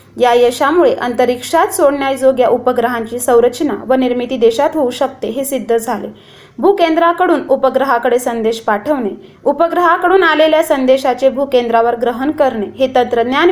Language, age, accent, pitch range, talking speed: Marathi, 20-39, native, 240-295 Hz, 115 wpm